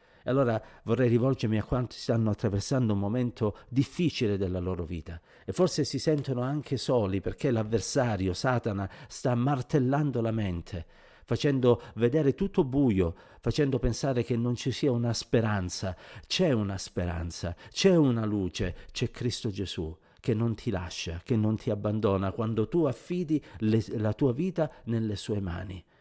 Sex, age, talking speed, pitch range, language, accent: male, 50-69, 150 wpm, 100-130 Hz, Italian, native